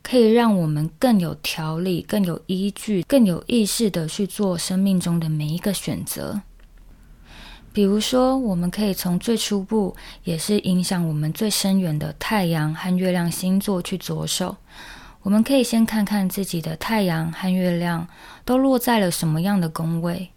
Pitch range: 170-210 Hz